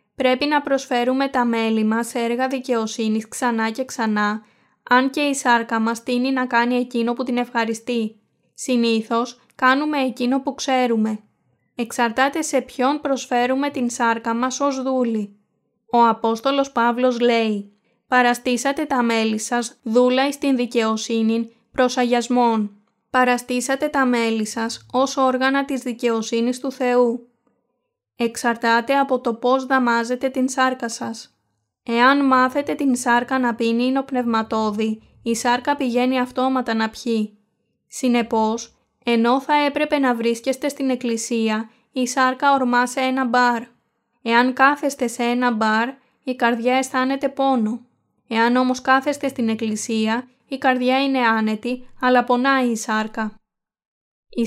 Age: 20-39